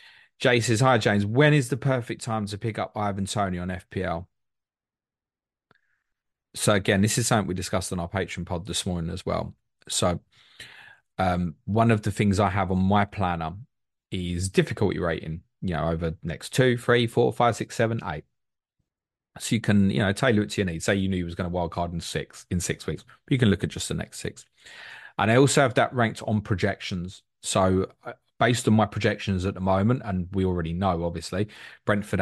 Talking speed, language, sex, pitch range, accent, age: 205 wpm, English, male, 90-115 Hz, British, 30-49